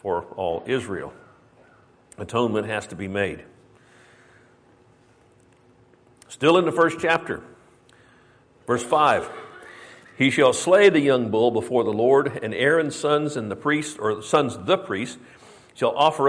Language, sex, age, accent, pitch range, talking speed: English, male, 50-69, American, 115-150 Hz, 135 wpm